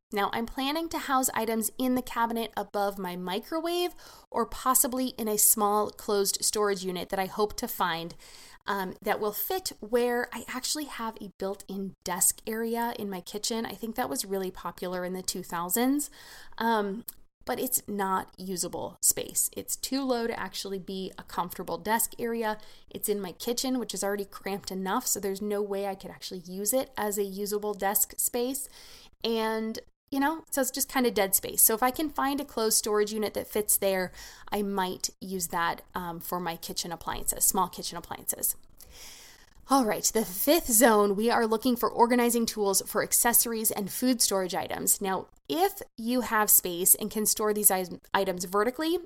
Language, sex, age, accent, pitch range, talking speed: English, female, 20-39, American, 195-240 Hz, 185 wpm